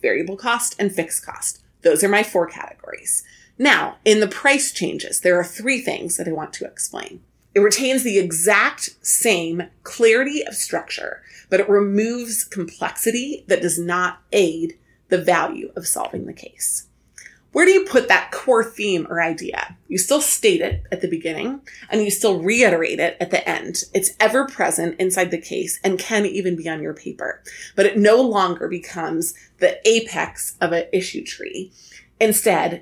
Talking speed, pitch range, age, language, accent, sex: 175 wpm, 175-230 Hz, 30-49, English, American, female